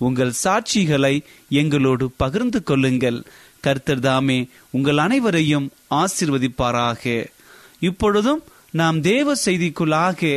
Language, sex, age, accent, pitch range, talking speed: Tamil, male, 30-49, native, 135-205 Hz, 80 wpm